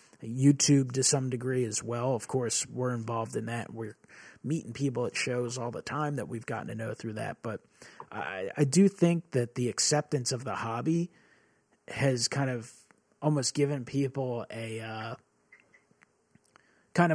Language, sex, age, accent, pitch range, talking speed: English, male, 30-49, American, 115-135 Hz, 165 wpm